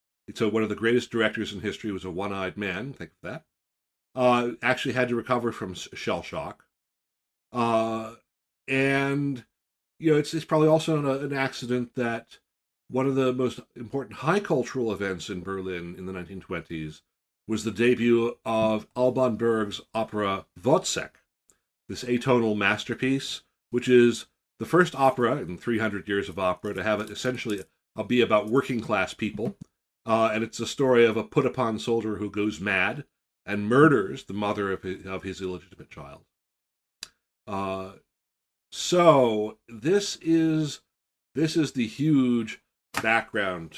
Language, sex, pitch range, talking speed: English, male, 100-130 Hz, 150 wpm